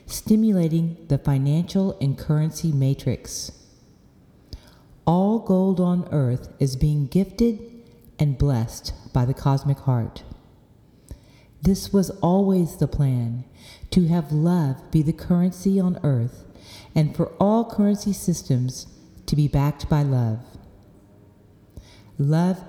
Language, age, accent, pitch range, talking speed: English, 40-59, American, 135-185 Hz, 115 wpm